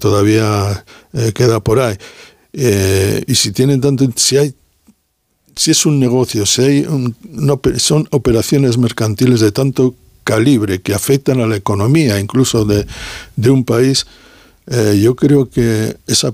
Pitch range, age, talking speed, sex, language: 110-130 Hz, 60-79, 125 wpm, male, Spanish